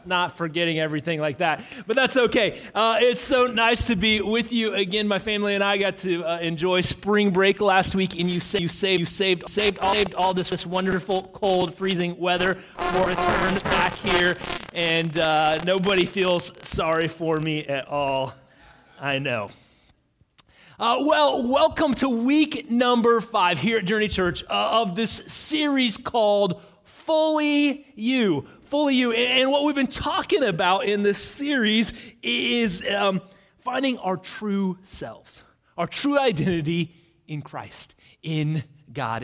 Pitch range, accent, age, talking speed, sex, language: 165-225 Hz, American, 30-49, 155 wpm, male, English